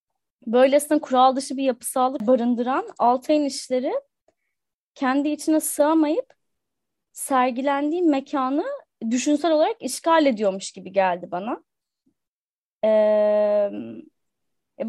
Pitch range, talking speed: 225-300 Hz, 90 wpm